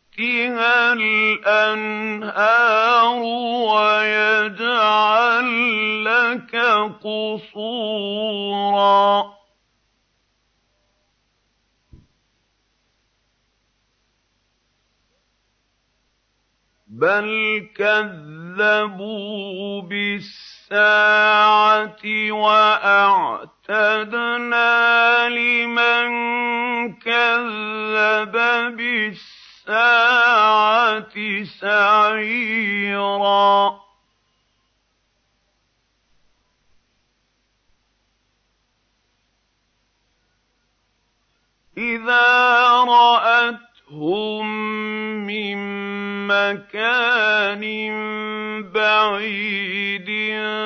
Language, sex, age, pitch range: Arabic, male, 50-69, 200-230 Hz